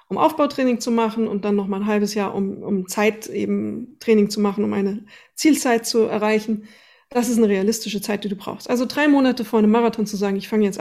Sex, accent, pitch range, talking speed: female, German, 210-250 Hz, 230 wpm